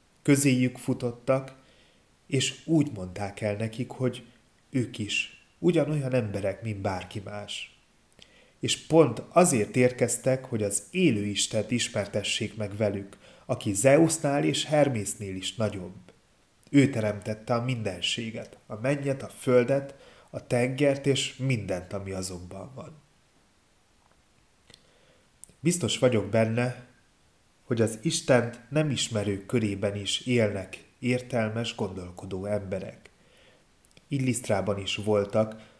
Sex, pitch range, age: male, 105-130 Hz, 30-49